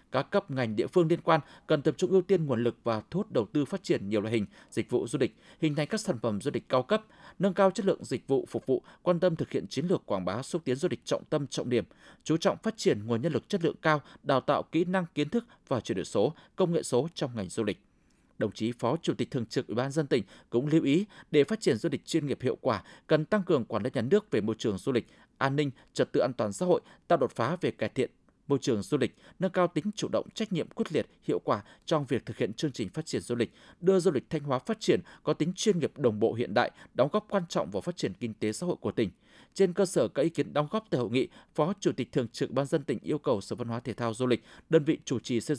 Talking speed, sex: 290 wpm, male